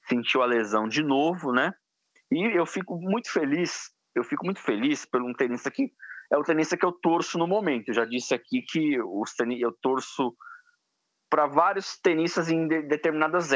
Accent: Brazilian